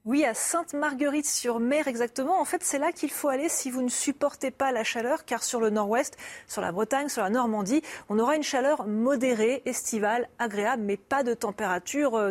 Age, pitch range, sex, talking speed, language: 30-49, 215-285 Hz, female, 190 wpm, French